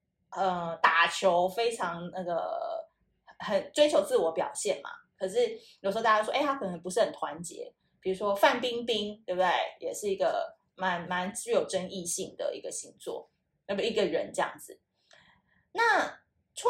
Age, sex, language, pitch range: 20-39, female, Chinese, 185-285 Hz